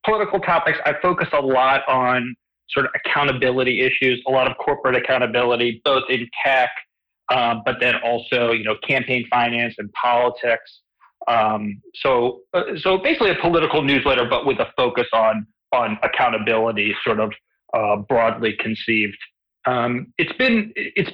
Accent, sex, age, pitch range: American, male, 40-59, 115-140 Hz